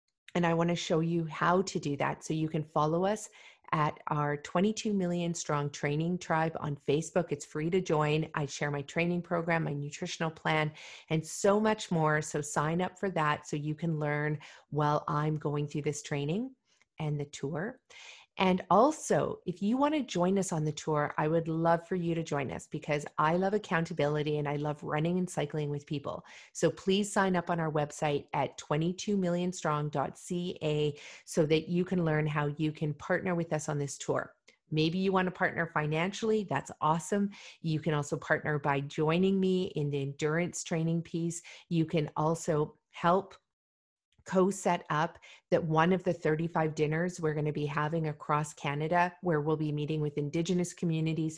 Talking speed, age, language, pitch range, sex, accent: 185 wpm, 40-59, English, 150-180 Hz, female, American